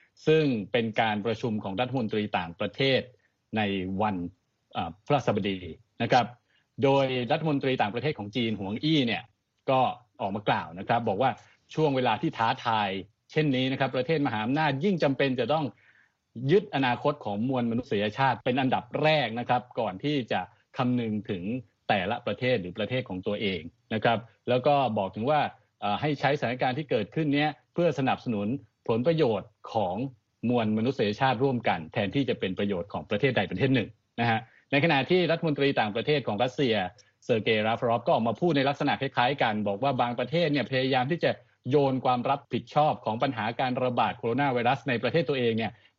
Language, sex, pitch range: Thai, male, 110-140 Hz